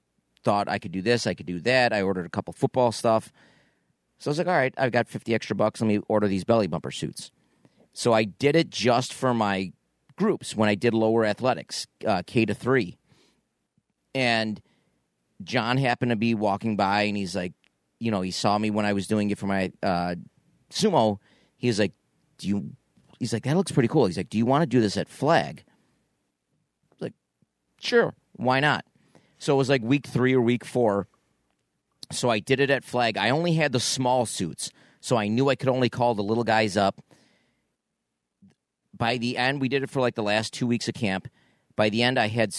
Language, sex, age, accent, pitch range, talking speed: English, male, 40-59, American, 105-125 Hz, 215 wpm